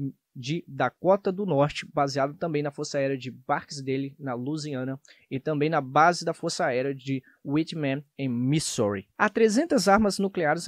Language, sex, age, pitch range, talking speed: Portuguese, male, 20-39, 135-180 Hz, 155 wpm